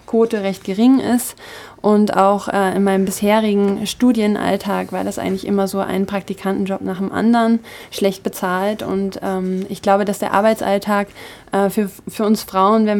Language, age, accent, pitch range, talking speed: German, 20-39, German, 195-215 Hz, 160 wpm